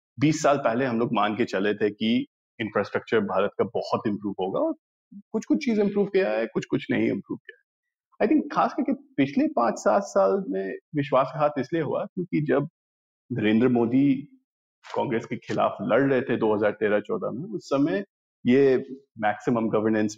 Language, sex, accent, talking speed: Hindi, male, native, 175 wpm